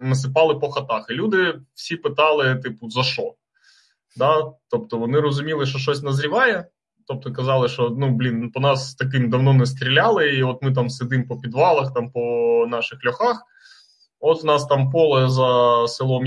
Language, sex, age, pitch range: Ukrainian, male, 20-39, 120-155 Hz